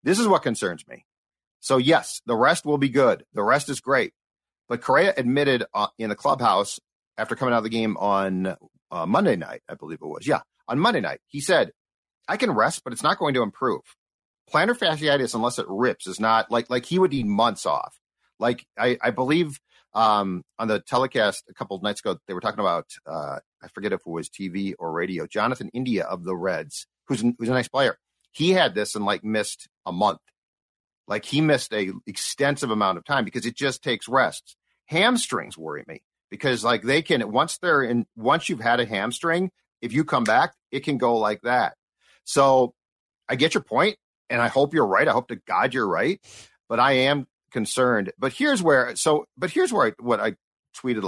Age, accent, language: 40-59, American, English